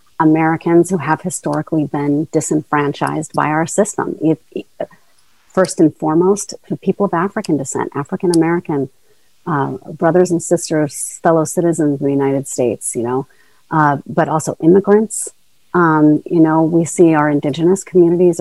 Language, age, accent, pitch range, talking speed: English, 40-59, American, 150-190 Hz, 135 wpm